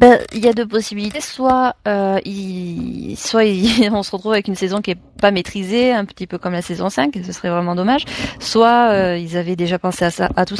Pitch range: 180-220 Hz